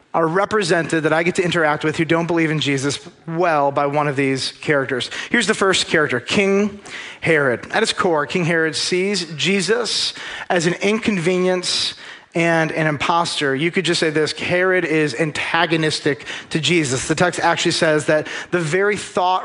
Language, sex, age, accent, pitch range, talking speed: English, male, 30-49, American, 150-180 Hz, 180 wpm